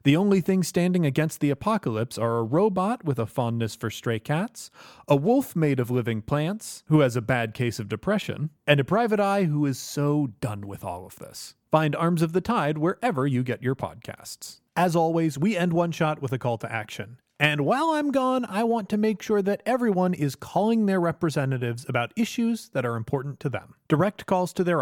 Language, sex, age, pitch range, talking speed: English, male, 30-49, 130-190 Hz, 215 wpm